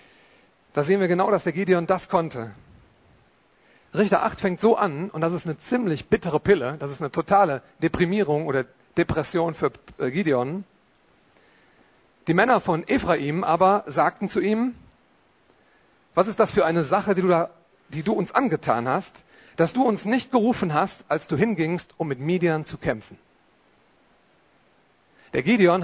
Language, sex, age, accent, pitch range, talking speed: German, male, 40-59, German, 155-195 Hz, 155 wpm